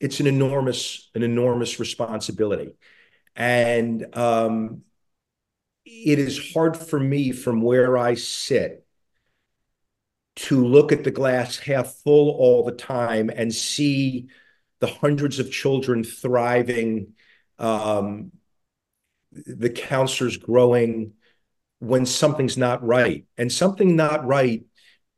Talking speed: 110 wpm